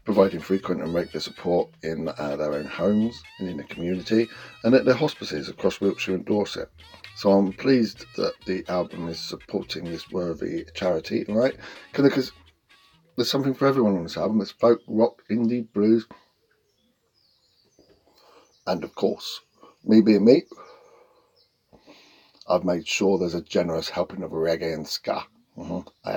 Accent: British